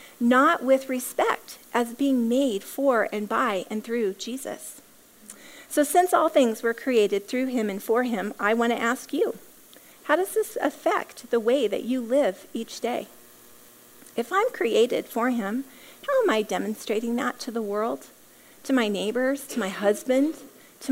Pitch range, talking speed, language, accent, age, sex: 225-285 Hz, 170 wpm, English, American, 40-59, female